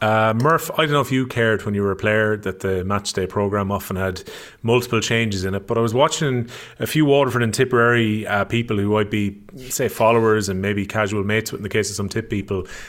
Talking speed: 235 wpm